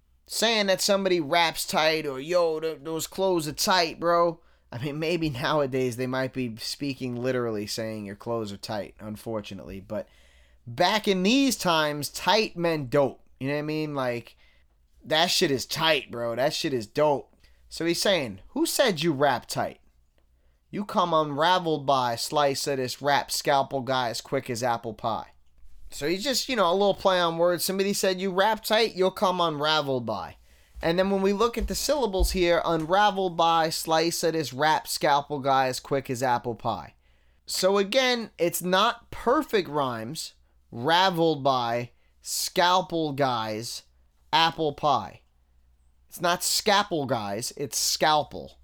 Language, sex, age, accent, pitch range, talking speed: English, male, 20-39, American, 110-180 Hz, 165 wpm